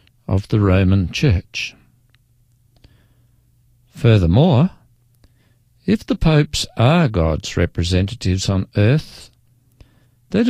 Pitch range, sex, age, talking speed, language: 105-130 Hz, male, 60-79, 80 wpm, English